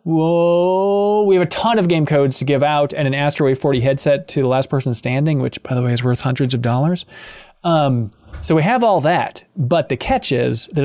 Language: English